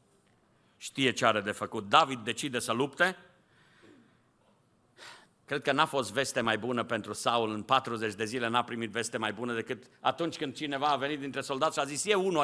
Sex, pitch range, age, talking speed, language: male, 135-195 Hz, 50-69, 195 wpm, Romanian